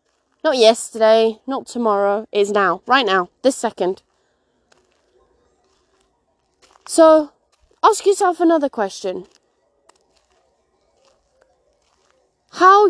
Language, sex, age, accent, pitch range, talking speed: English, female, 20-39, British, 225-315 Hz, 75 wpm